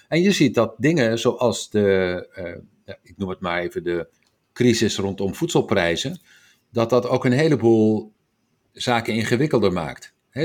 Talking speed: 150 wpm